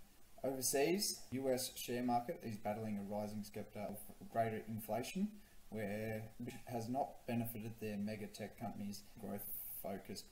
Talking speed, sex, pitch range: 120 wpm, male, 105-120 Hz